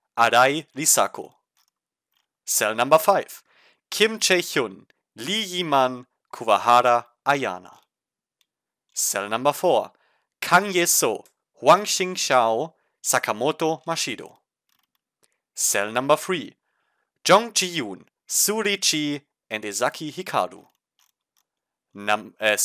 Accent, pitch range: German, 120-175 Hz